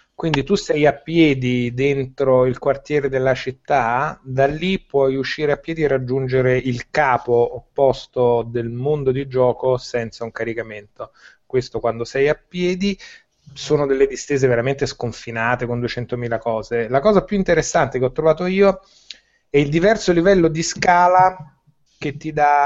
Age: 30-49